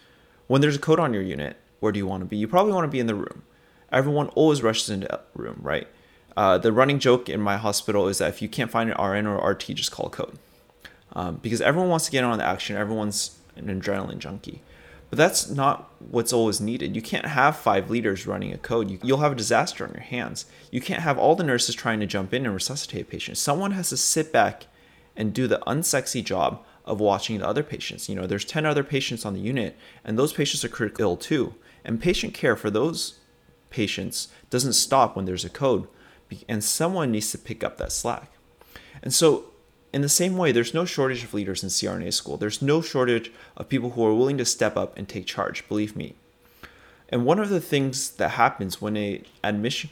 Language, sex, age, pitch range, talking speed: English, male, 20-39, 105-140 Hz, 225 wpm